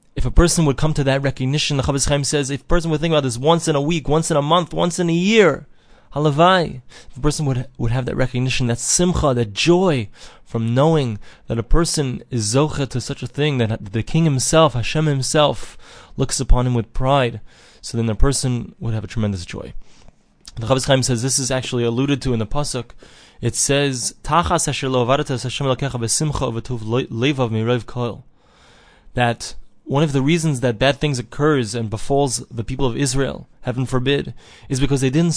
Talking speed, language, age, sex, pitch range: 195 wpm, English, 20-39, male, 125-150 Hz